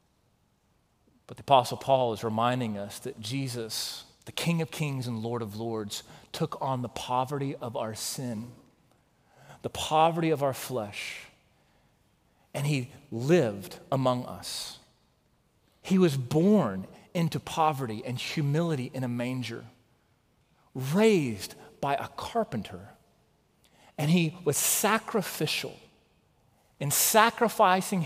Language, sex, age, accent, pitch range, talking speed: English, male, 40-59, American, 115-155 Hz, 115 wpm